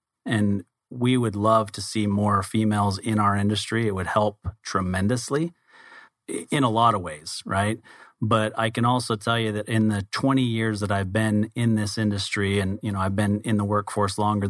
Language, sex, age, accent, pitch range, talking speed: English, male, 30-49, American, 100-115 Hz, 195 wpm